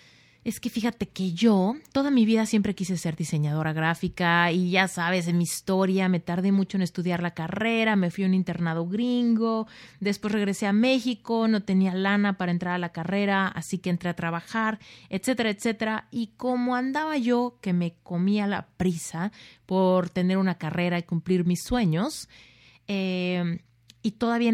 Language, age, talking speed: Spanish, 30-49, 175 wpm